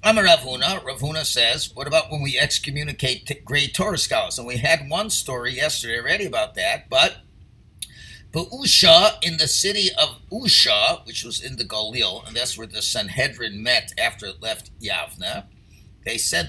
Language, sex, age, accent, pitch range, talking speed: English, male, 50-69, American, 110-180 Hz, 170 wpm